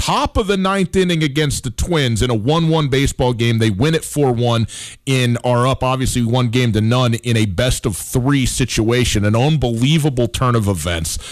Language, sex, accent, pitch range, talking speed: English, male, American, 105-155 Hz, 190 wpm